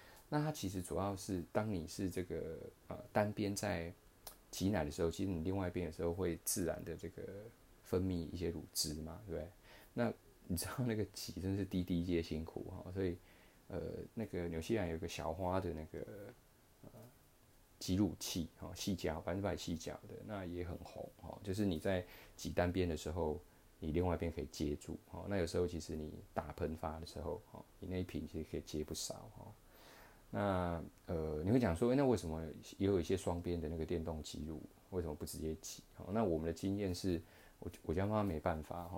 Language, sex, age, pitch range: Chinese, male, 20-39, 80-95 Hz